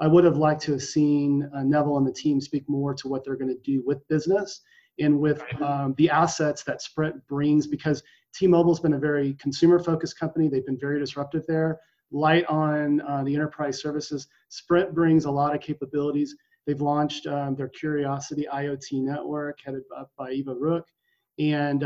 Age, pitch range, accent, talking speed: 30-49, 135-155 Hz, American, 190 wpm